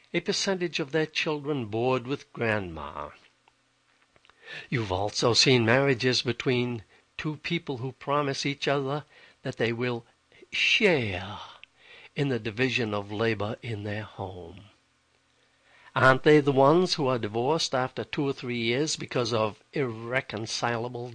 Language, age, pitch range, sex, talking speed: English, 60-79, 115-155 Hz, male, 130 wpm